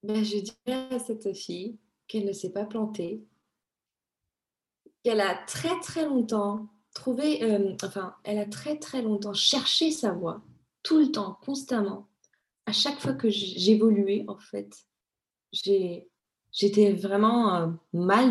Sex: female